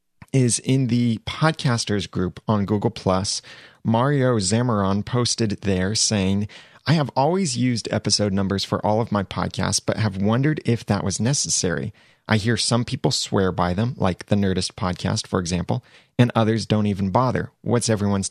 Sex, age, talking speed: male, 30-49, 165 wpm